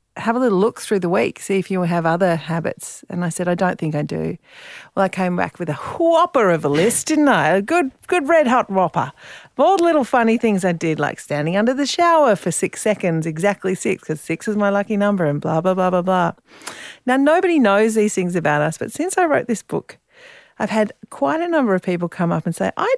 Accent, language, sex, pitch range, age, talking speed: Australian, English, female, 160-205 Hz, 40-59, 245 wpm